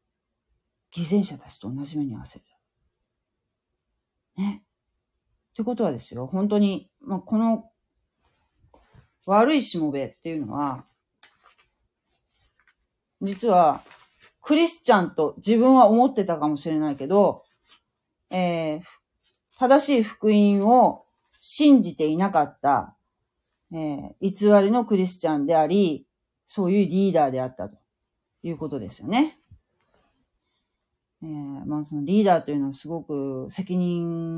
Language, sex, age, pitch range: Japanese, female, 40-59, 140-200 Hz